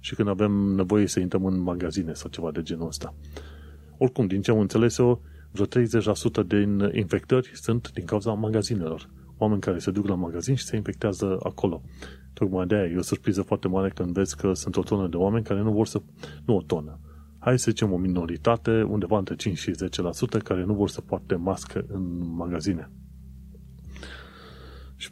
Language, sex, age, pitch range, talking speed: Romanian, male, 30-49, 80-105 Hz, 185 wpm